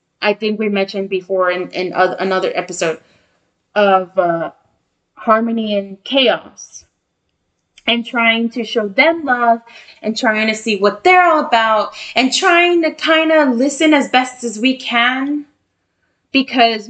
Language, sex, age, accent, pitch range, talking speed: English, female, 20-39, American, 195-250 Hz, 145 wpm